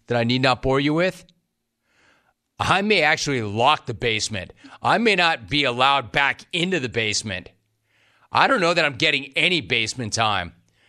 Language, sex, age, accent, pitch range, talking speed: English, male, 40-59, American, 110-145 Hz, 170 wpm